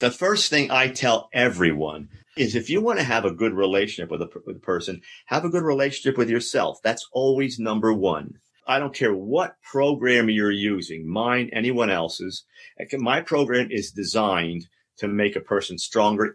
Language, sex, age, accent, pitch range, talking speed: English, male, 50-69, American, 100-125 Hz, 175 wpm